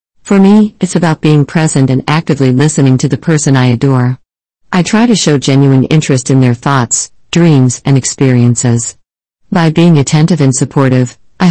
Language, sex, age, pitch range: Chinese, female, 50-69, 130-165 Hz